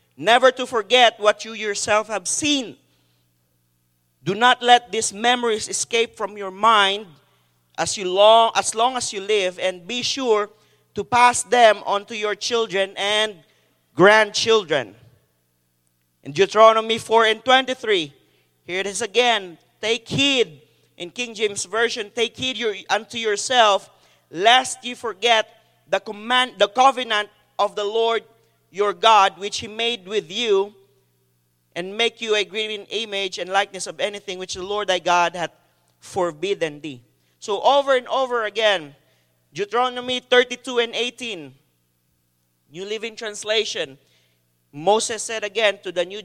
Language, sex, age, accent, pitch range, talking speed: English, male, 40-59, Filipino, 170-230 Hz, 145 wpm